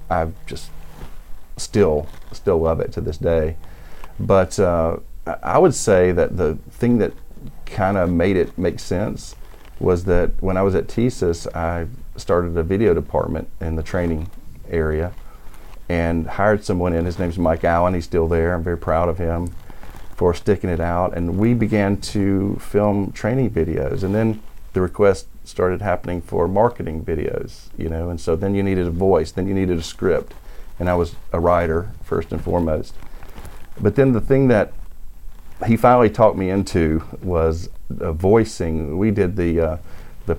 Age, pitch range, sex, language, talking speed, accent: 40-59, 80-95 Hz, male, English, 170 wpm, American